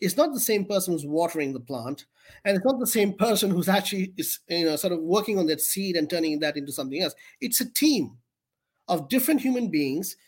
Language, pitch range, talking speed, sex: English, 160-200 Hz, 210 wpm, male